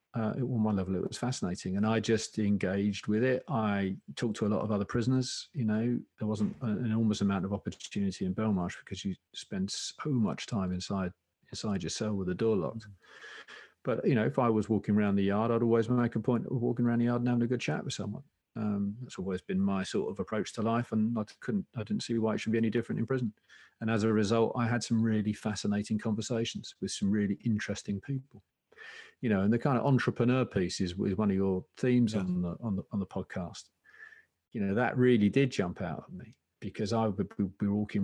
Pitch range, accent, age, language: 100-120 Hz, British, 40-59, English